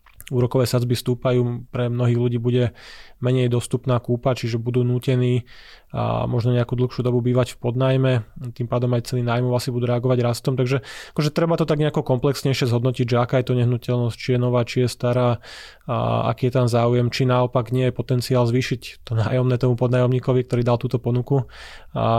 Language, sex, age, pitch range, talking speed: Slovak, male, 20-39, 120-130 Hz, 185 wpm